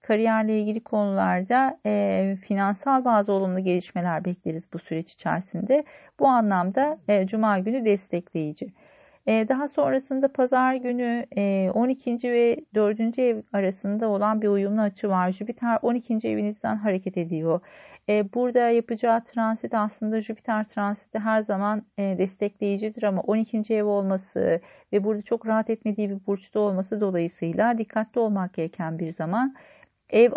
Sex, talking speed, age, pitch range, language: female, 140 wpm, 40-59, 190-235 Hz, Turkish